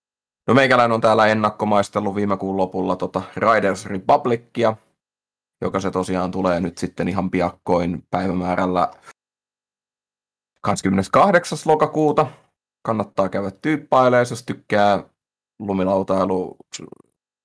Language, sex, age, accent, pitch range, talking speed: Finnish, male, 30-49, native, 95-110 Hz, 95 wpm